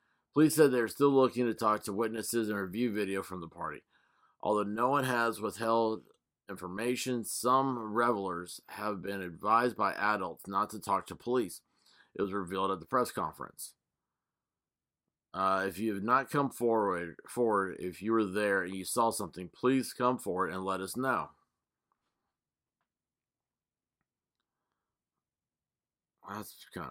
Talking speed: 145 wpm